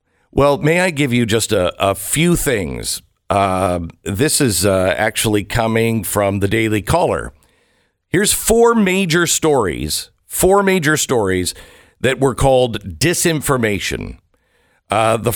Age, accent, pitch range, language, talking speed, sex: 50-69, American, 100-150 Hz, English, 130 wpm, male